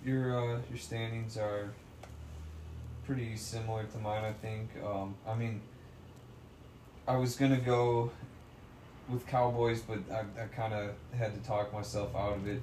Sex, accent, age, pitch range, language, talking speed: male, American, 20-39, 95-115 Hz, English, 150 wpm